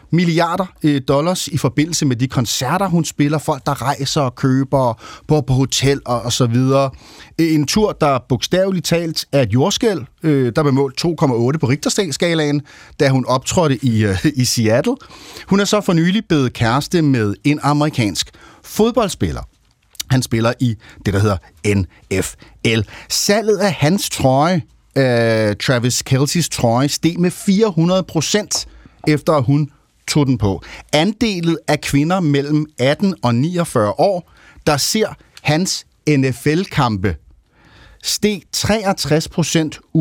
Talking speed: 130 wpm